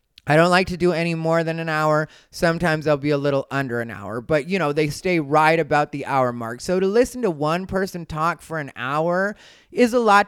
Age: 30-49